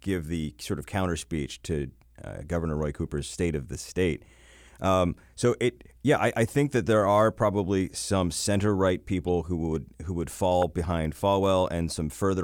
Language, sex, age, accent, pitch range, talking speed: English, male, 30-49, American, 75-95 Hz, 195 wpm